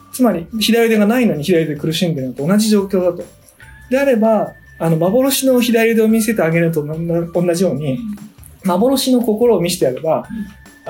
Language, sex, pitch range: Japanese, male, 165-230 Hz